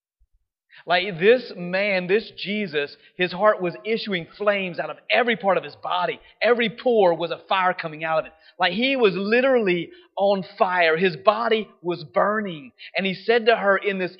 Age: 30-49